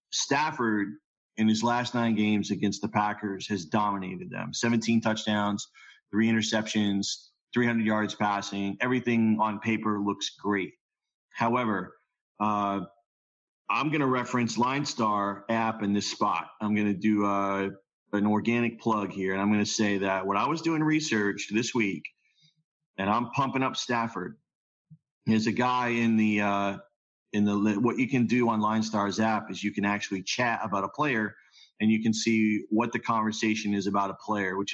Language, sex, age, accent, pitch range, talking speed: English, male, 30-49, American, 100-120 Hz, 165 wpm